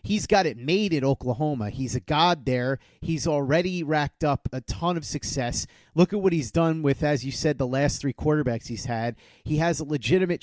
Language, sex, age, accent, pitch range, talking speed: English, male, 30-49, American, 135-165 Hz, 215 wpm